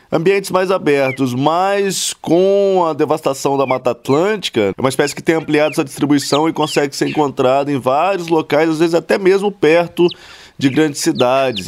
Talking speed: 170 wpm